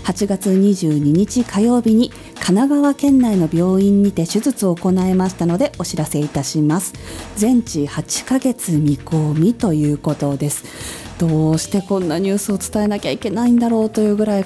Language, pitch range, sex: Japanese, 175-225 Hz, female